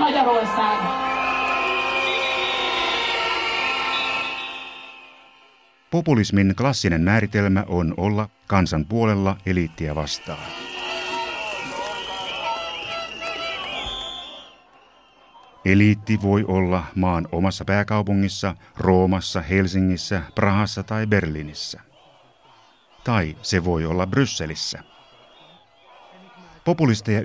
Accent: native